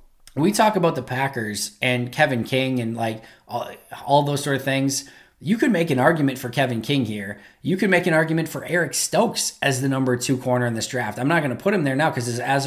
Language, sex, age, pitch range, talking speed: English, male, 20-39, 125-150 Hz, 240 wpm